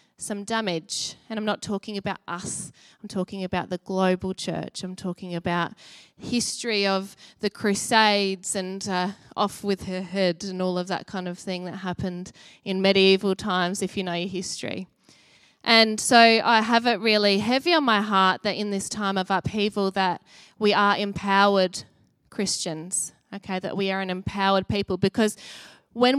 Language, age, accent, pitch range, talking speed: English, 20-39, Australian, 190-220 Hz, 170 wpm